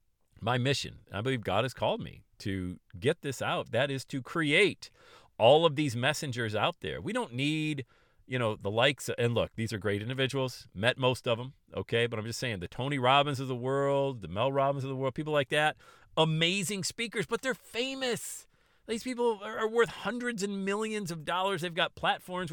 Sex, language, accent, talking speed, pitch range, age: male, English, American, 200 wpm, 105-155 Hz, 40-59